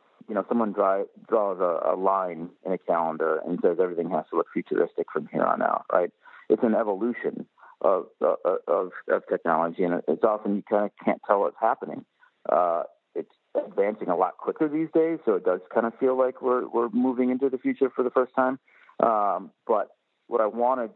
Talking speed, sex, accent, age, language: 205 wpm, male, American, 40-59, English